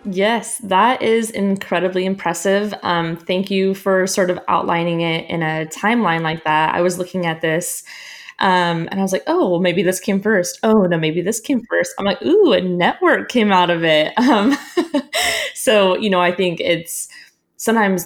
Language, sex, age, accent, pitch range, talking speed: English, female, 20-39, American, 165-195 Hz, 190 wpm